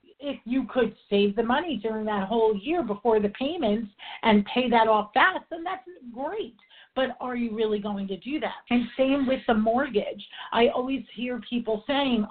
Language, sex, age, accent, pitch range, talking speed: English, female, 40-59, American, 205-260 Hz, 190 wpm